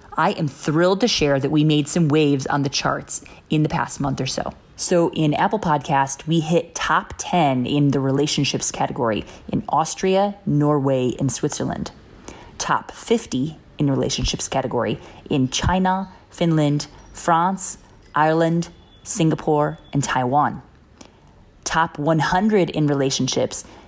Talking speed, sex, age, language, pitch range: 135 wpm, female, 30-49, English, 140-175 Hz